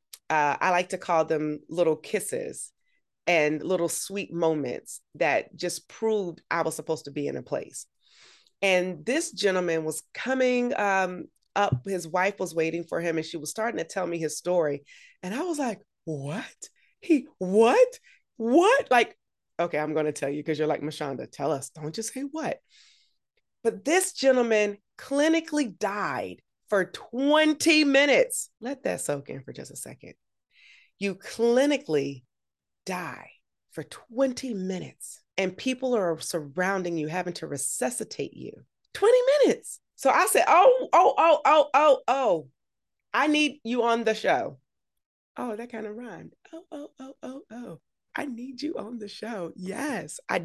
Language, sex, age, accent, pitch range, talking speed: English, female, 30-49, American, 165-275 Hz, 160 wpm